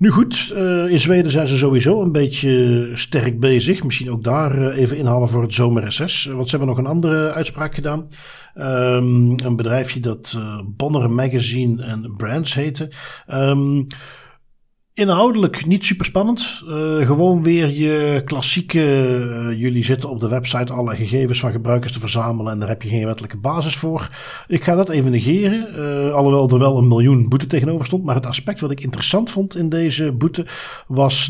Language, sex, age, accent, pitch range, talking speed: Dutch, male, 50-69, Dutch, 120-155 Hz, 170 wpm